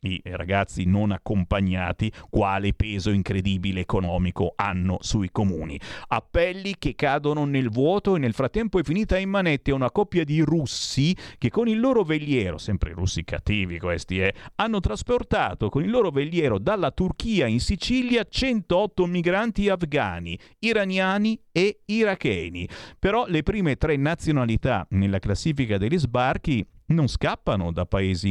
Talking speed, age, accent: 140 wpm, 40-59, native